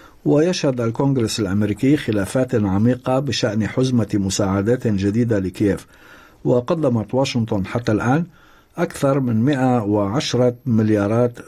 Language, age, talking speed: Arabic, 50-69, 95 wpm